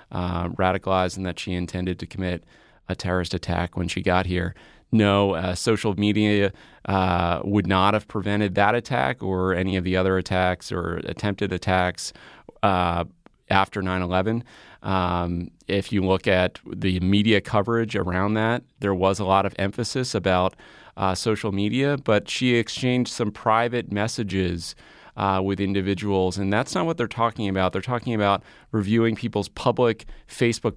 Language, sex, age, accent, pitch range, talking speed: English, male, 30-49, American, 95-110 Hz, 155 wpm